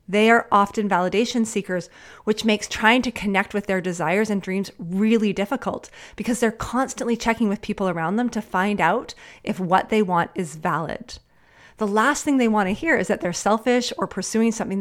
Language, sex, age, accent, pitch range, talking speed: English, female, 30-49, American, 190-235 Hz, 195 wpm